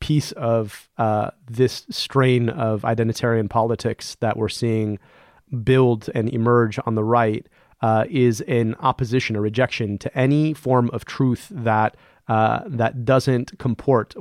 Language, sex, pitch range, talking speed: English, male, 110-130 Hz, 140 wpm